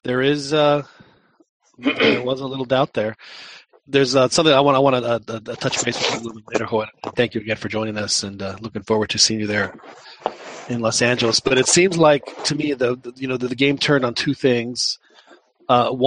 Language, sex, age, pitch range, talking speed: English, male, 30-49, 115-140 Hz, 235 wpm